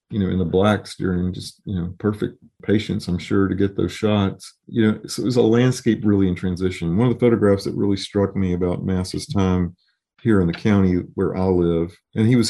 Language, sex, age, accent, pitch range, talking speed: English, male, 40-59, American, 90-105 Hz, 230 wpm